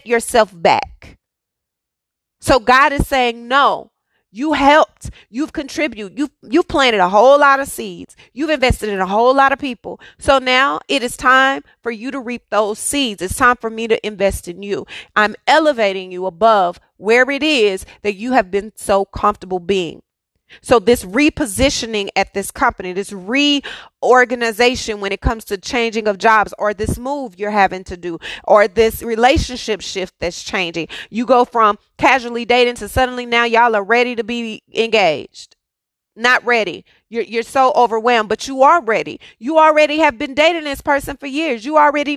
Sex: female